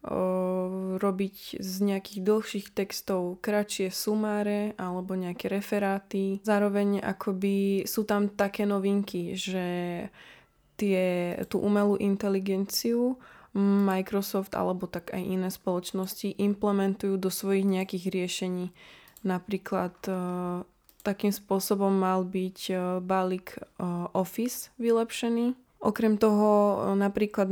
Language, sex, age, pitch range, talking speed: Slovak, female, 20-39, 185-205 Hz, 95 wpm